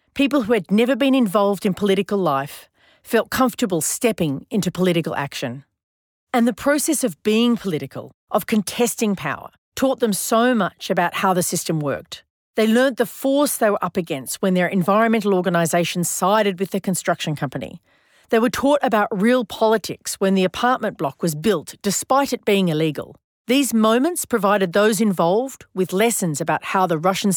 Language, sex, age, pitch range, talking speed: English, female, 40-59, 170-230 Hz, 170 wpm